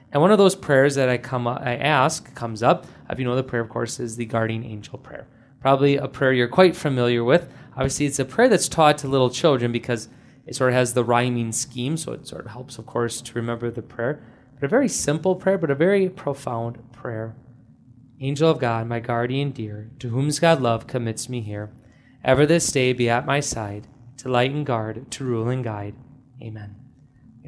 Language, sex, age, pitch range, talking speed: English, male, 20-39, 120-145 Hz, 215 wpm